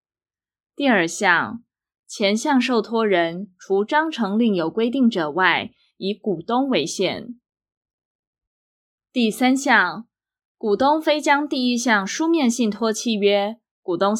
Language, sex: Chinese, female